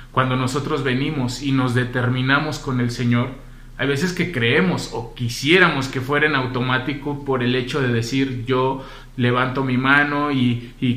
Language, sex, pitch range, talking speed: Spanish, male, 125-140 Hz, 165 wpm